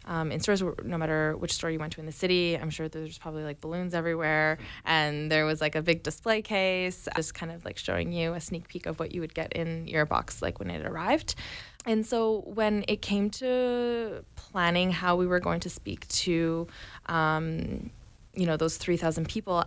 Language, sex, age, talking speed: English, female, 20-39, 210 wpm